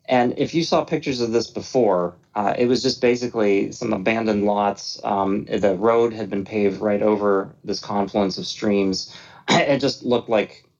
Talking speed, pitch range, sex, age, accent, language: 180 wpm, 100-120 Hz, male, 30-49, American, English